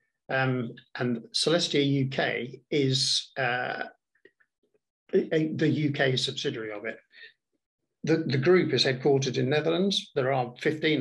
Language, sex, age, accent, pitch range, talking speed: Turkish, male, 50-69, British, 120-150 Hz, 125 wpm